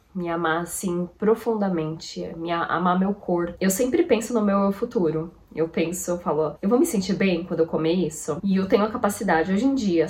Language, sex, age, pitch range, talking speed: Portuguese, female, 20-39, 160-195 Hz, 215 wpm